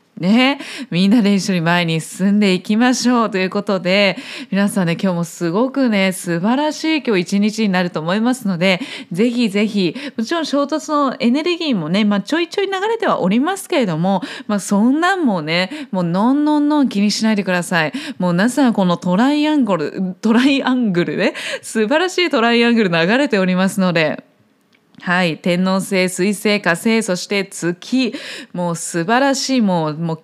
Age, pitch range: 20-39, 185-260 Hz